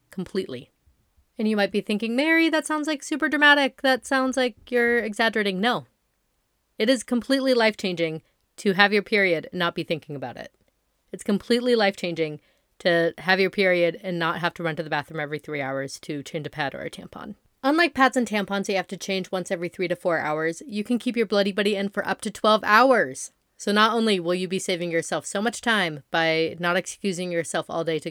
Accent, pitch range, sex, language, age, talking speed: American, 170-225 Hz, female, English, 30-49, 215 wpm